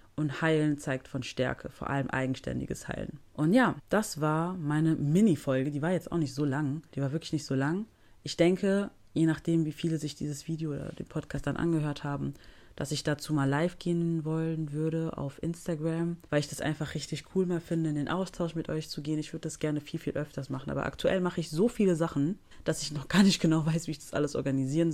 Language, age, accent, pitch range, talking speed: German, 30-49, German, 135-160 Hz, 230 wpm